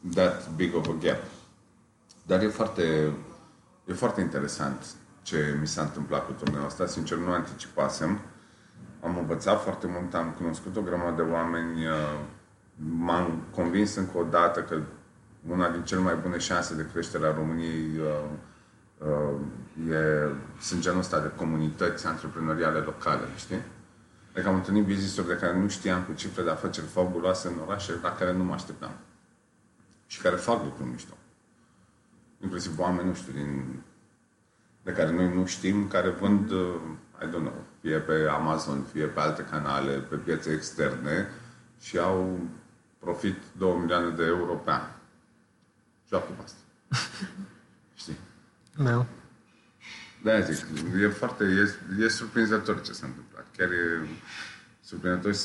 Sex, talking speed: male, 145 wpm